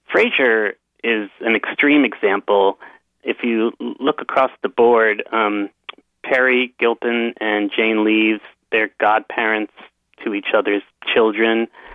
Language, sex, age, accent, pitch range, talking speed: English, male, 30-49, American, 105-115 Hz, 115 wpm